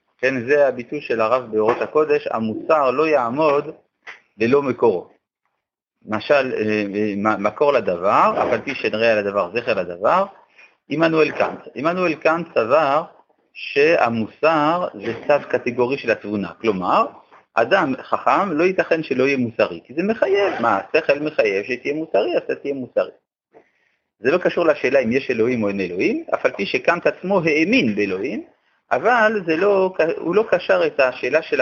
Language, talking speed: Hebrew, 145 wpm